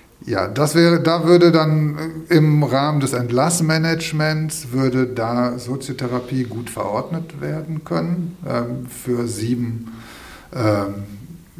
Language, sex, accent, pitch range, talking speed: German, male, German, 115-135 Hz, 110 wpm